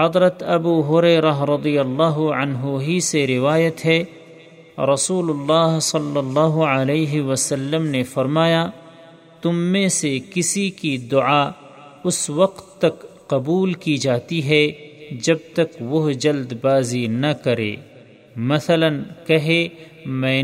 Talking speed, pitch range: 115 wpm, 125-165 Hz